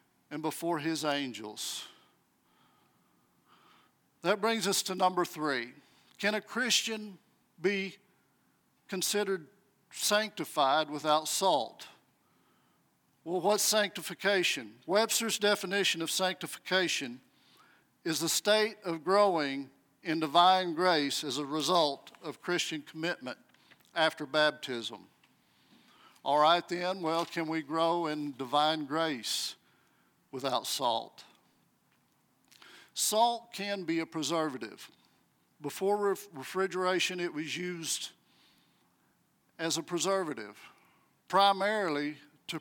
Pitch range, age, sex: 155-195 Hz, 50-69, male